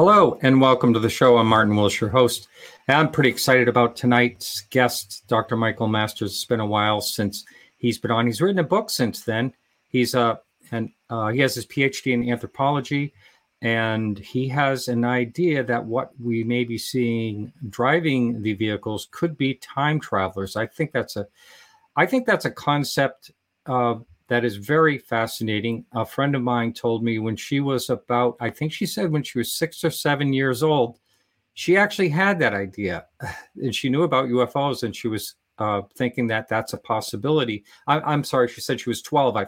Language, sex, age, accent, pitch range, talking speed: English, male, 50-69, American, 115-135 Hz, 195 wpm